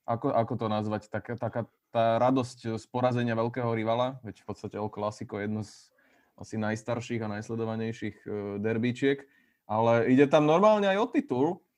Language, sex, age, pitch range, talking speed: Slovak, male, 20-39, 115-145 Hz, 165 wpm